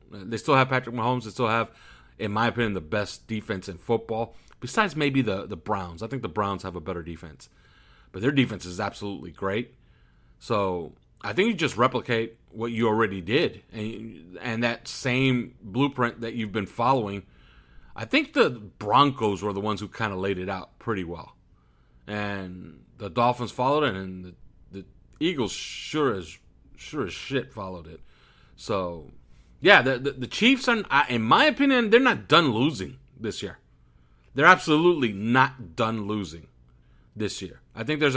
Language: English